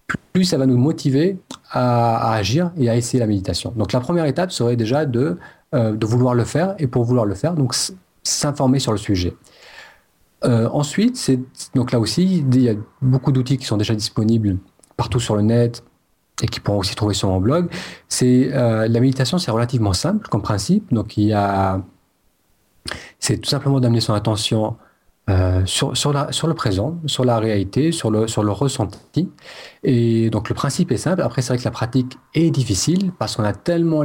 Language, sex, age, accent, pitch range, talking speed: French, male, 40-59, French, 110-145 Hz, 195 wpm